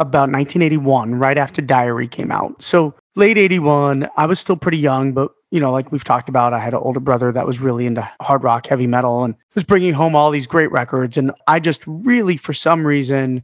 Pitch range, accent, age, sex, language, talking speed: 130-160 Hz, American, 30-49, male, English, 225 wpm